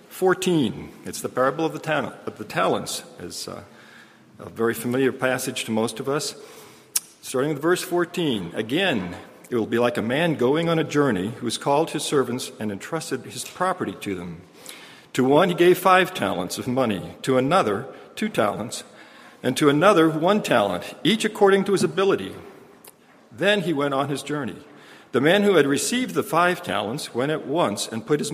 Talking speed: 180 wpm